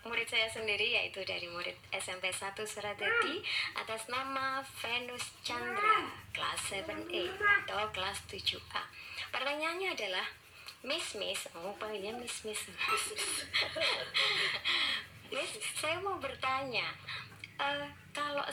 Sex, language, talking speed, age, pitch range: male, Malay, 105 wpm, 20-39, 190-285 Hz